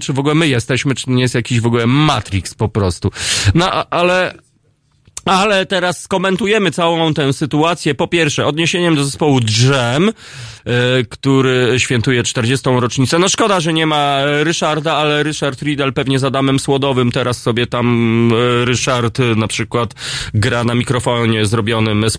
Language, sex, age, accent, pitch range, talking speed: Polish, male, 30-49, native, 115-155 Hz, 150 wpm